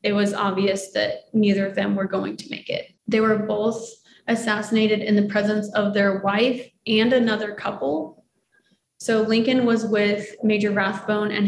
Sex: female